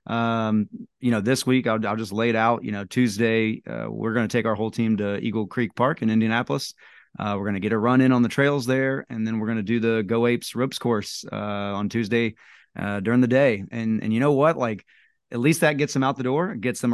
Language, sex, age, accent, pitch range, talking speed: English, male, 30-49, American, 105-125 Hz, 250 wpm